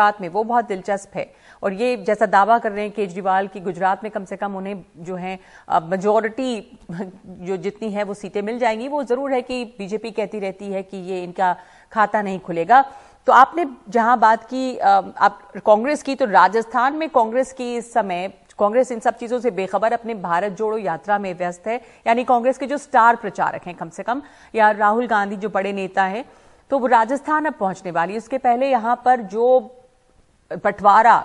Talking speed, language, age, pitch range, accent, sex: 190 wpm, Hindi, 50-69, 195-240 Hz, native, female